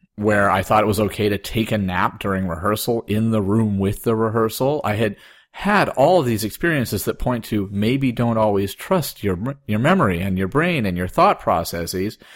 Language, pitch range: English, 95-120 Hz